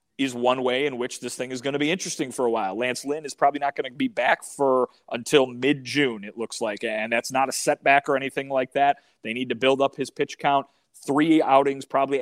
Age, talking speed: 30-49, 250 wpm